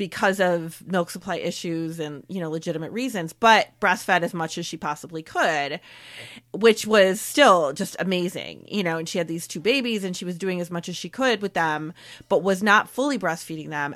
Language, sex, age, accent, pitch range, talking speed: English, female, 30-49, American, 170-230 Hz, 205 wpm